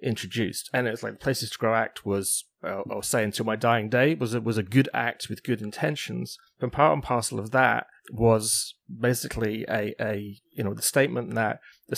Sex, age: male, 30-49